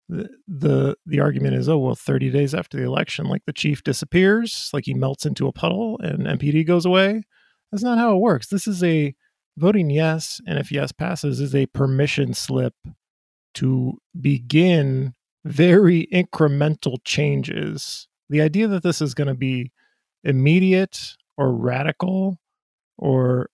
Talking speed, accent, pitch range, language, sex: 155 wpm, American, 135-175 Hz, English, male